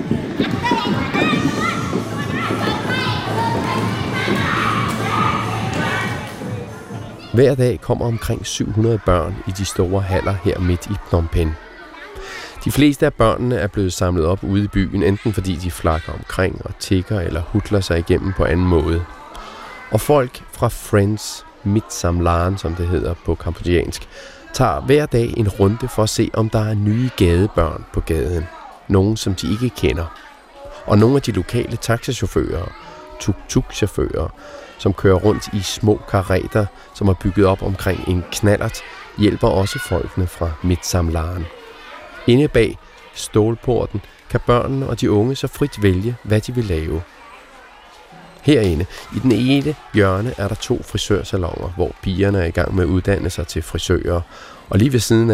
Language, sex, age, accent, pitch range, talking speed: Danish, male, 30-49, native, 90-115 Hz, 145 wpm